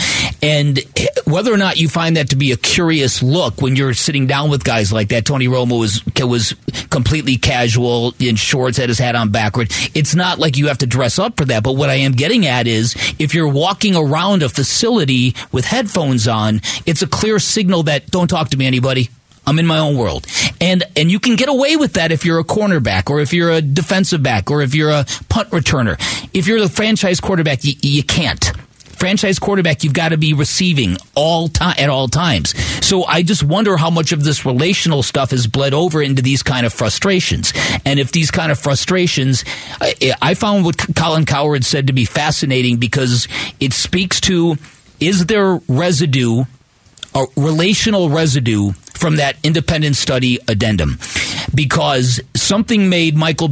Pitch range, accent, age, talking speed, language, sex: 125-170 Hz, American, 40-59, 190 wpm, English, male